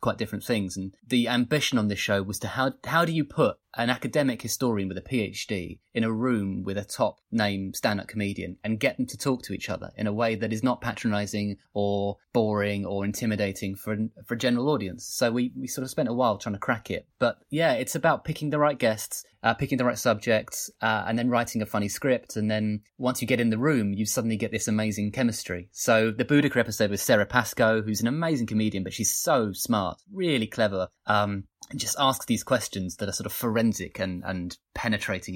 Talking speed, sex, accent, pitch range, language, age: 225 wpm, male, British, 100-125 Hz, English, 30-49